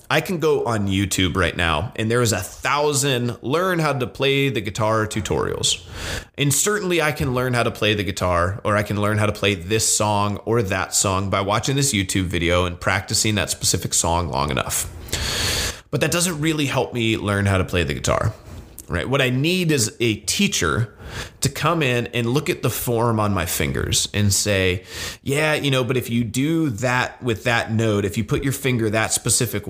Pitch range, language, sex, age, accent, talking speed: 100-130 Hz, English, male, 30-49, American, 210 wpm